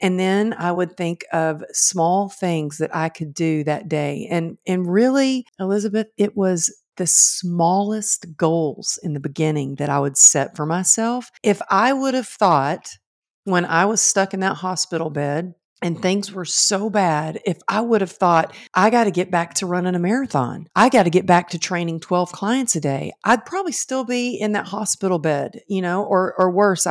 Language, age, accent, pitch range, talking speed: English, 50-69, American, 160-200 Hz, 195 wpm